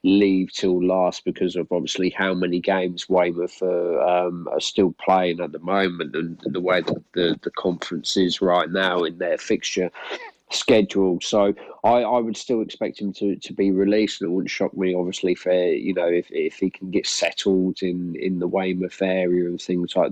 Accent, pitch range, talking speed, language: British, 90-100 Hz, 195 wpm, English